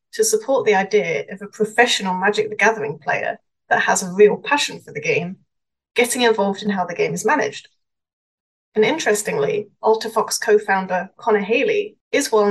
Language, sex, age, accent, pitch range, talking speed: English, female, 30-49, British, 200-245 Hz, 170 wpm